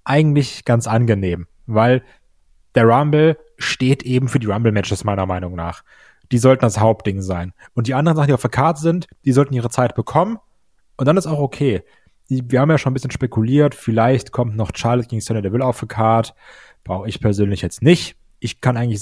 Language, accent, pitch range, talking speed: German, German, 115-135 Hz, 200 wpm